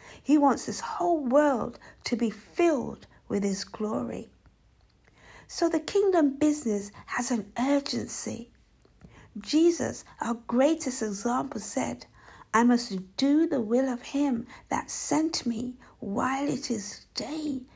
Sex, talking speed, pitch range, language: female, 125 wpm, 240-305 Hz, English